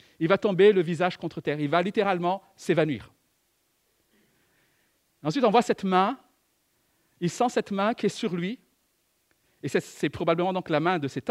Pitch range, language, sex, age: 160-230 Hz, French, male, 50-69